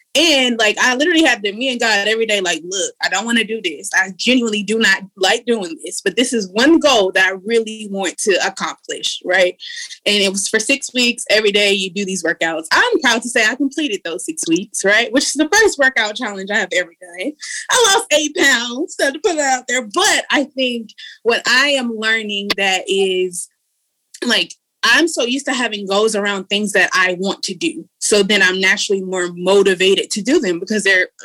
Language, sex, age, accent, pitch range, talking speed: English, female, 20-39, American, 200-285 Hz, 220 wpm